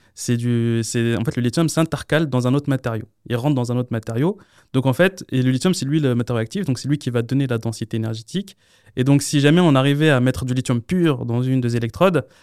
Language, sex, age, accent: French, male, 20-39, French